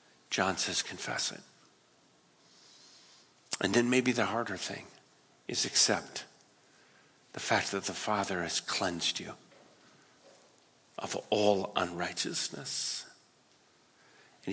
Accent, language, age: American, English, 50-69